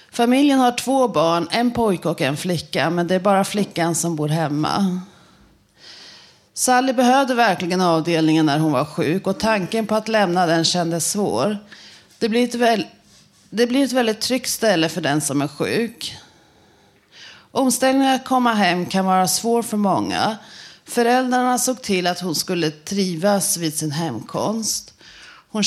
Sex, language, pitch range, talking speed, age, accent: female, Swedish, 175-225 Hz, 150 wpm, 30-49, native